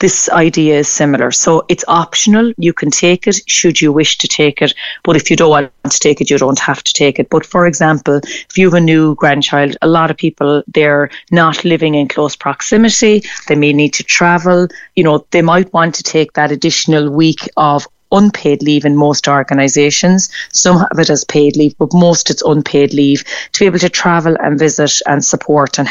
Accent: Irish